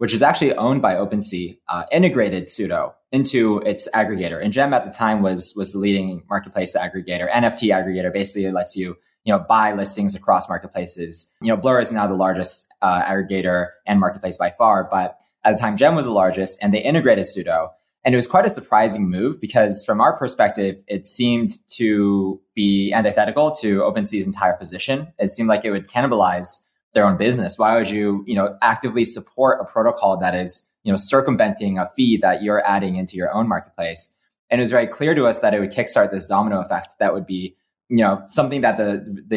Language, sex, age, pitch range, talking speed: English, male, 20-39, 95-110 Hz, 205 wpm